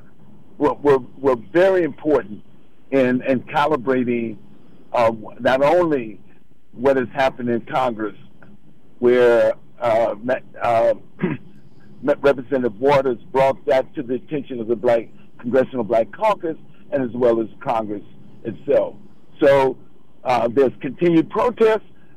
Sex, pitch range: male, 125-155 Hz